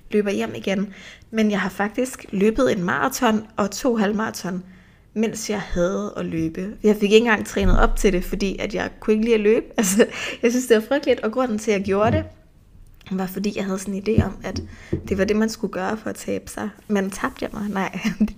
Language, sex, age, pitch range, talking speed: Danish, female, 20-39, 185-220 Hz, 235 wpm